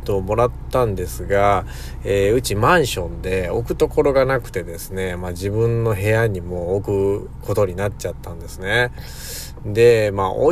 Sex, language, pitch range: male, Japanese, 95-115 Hz